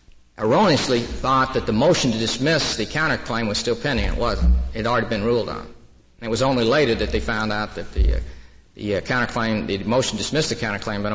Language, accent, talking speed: English, American, 230 wpm